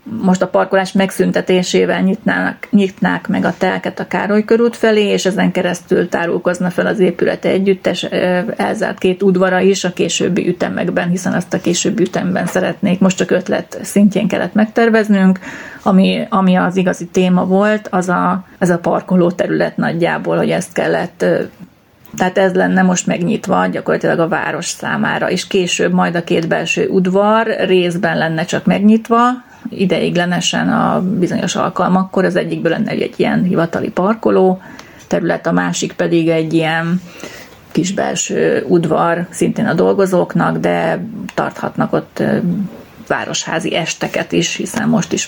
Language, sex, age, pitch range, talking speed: Hungarian, female, 30-49, 180-205 Hz, 140 wpm